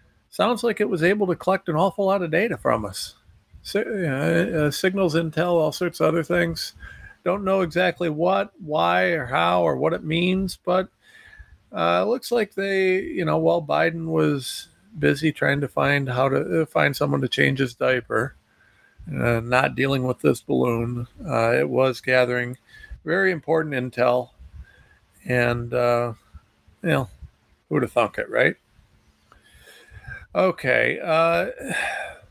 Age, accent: 50-69, American